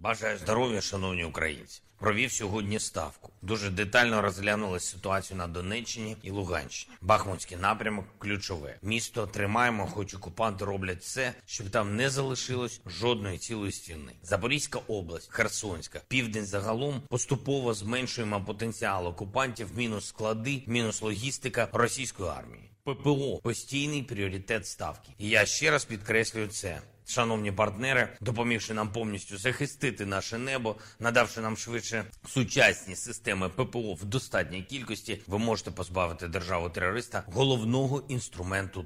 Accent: native